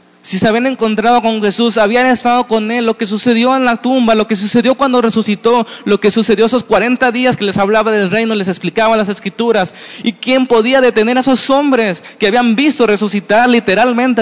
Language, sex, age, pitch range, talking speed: Spanish, male, 30-49, 170-230 Hz, 205 wpm